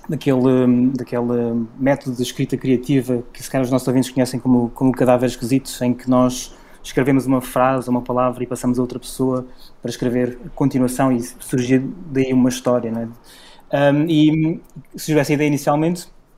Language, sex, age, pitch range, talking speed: Portuguese, male, 20-39, 125-140 Hz, 165 wpm